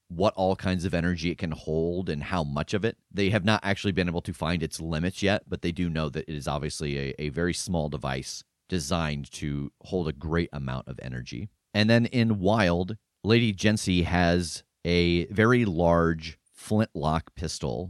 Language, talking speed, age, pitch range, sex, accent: English, 190 wpm, 30-49, 80-100 Hz, male, American